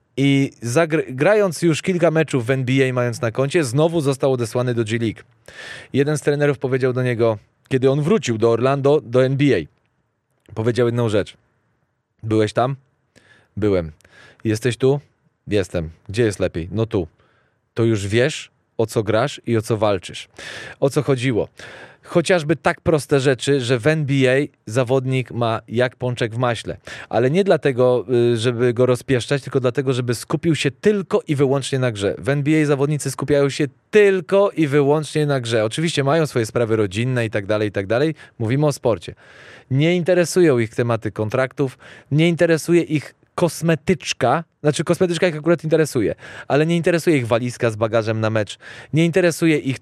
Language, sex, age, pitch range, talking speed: Polish, male, 20-39, 115-150 Hz, 160 wpm